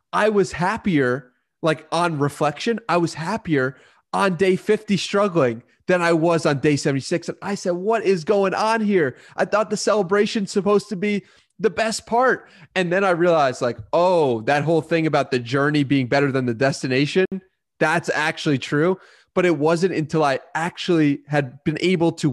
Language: English